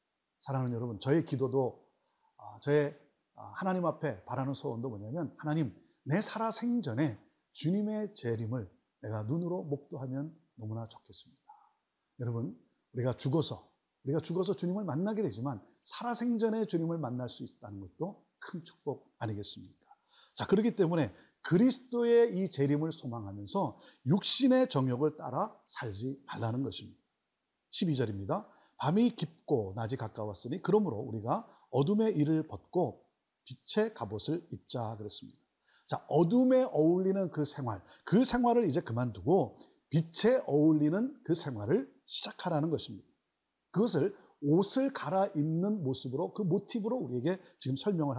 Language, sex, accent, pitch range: Korean, male, native, 125-195 Hz